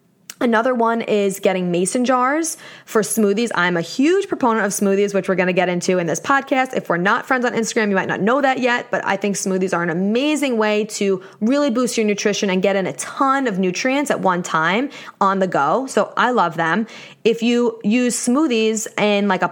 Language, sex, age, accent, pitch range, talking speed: English, female, 20-39, American, 190-255 Hz, 220 wpm